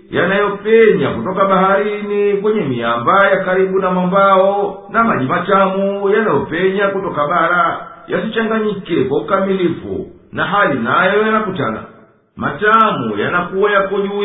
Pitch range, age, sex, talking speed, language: 180-205 Hz, 50-69, male, 100 wpm, Swahili